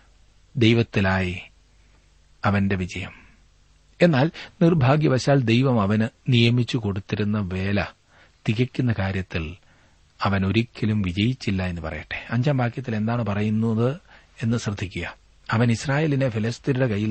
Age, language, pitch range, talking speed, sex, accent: 40-59, Malayalam, 100-145 Hz, 95 wpm, male, native